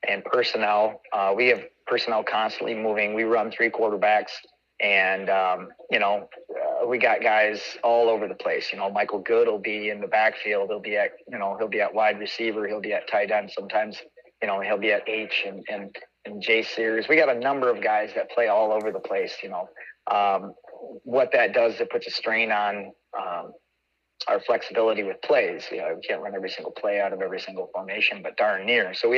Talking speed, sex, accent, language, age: 215 wpm, male, American, English, 30-49